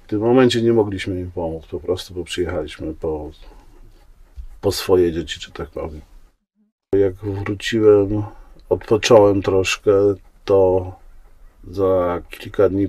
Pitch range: 90-105 Hz